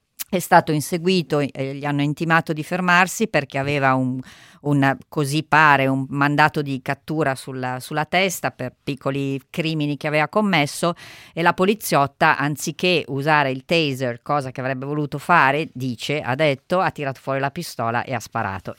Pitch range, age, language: 135-160 Hz, 40-59, Italian